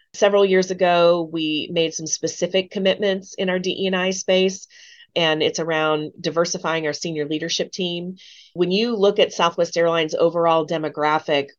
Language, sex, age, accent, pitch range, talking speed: English, female, 30-49, American, 150-175 Hz, 145 wpm